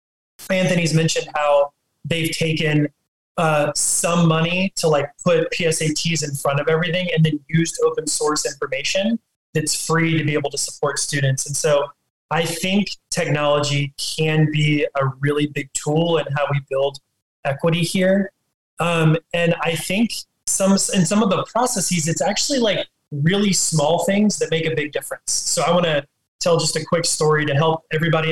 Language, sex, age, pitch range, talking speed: English, male, 20-39, 150-175 Hz, 170 wpm